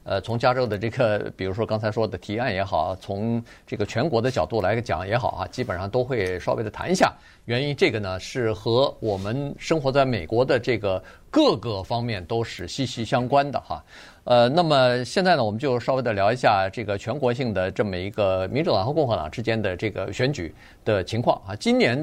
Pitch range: 105-140 Hz